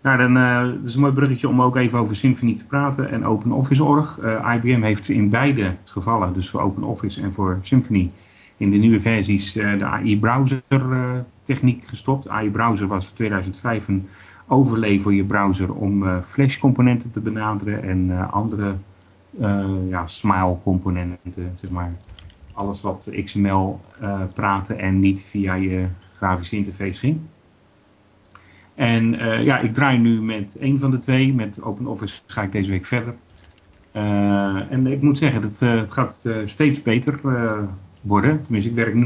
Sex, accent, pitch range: male, Dutch, 95-120 Hz